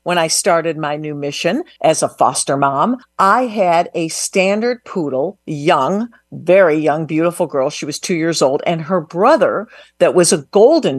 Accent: American